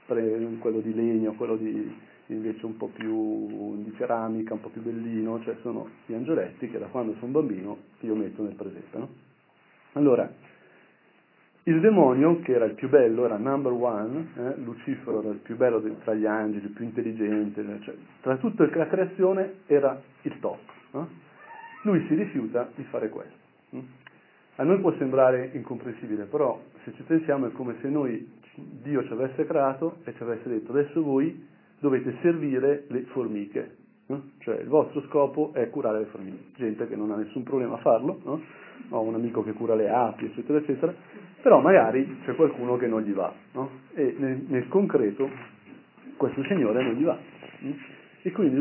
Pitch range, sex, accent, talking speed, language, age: 110-145 Hz, male, native, 175 wpm, Italian, 40-59